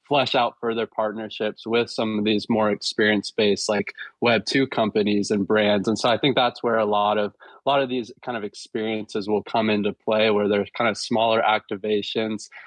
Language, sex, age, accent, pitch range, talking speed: English, male, 20-39, American, 105-115 Hz, 200 wpm